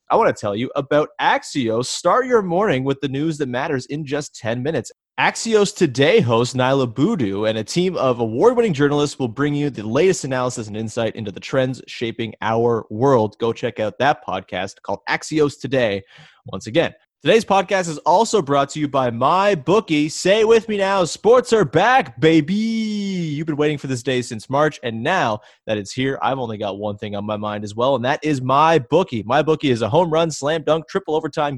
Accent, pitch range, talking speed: American, 120-160 Hz, 210 wpm